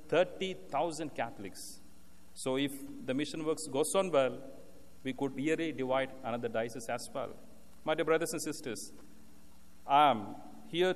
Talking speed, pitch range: 135 wpm, 125-155 Hz